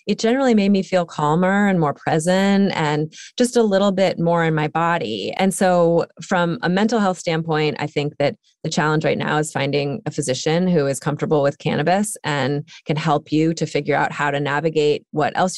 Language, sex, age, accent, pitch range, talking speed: English, female, 20-39, American, 155-185 Hz, 205 wpm